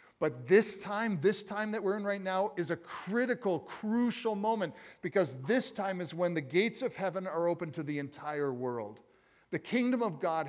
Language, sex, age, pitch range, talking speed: English, male, 50-69, 145-185 Hz, 195 wpm